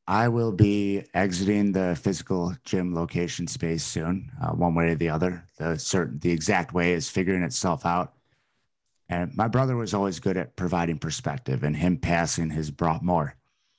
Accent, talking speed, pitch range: American, 175 wpm, 85-110 Hz